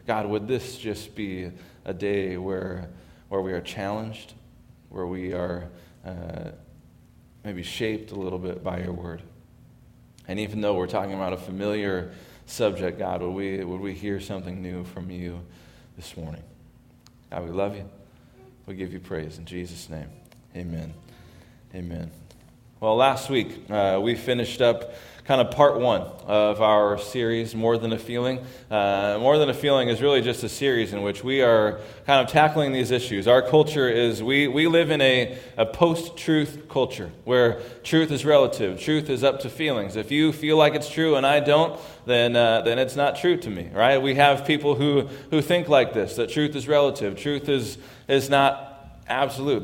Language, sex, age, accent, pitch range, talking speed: English, male, 20-39, American, 95-135 Hz, 180 wpm